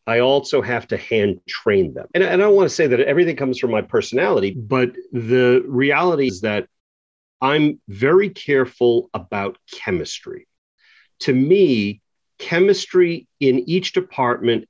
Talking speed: 145 wpm